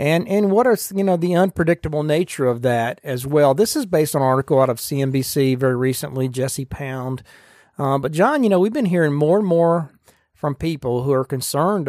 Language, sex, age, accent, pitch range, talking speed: English, male, 40-59, American, 125-155 Hz, 210 wpm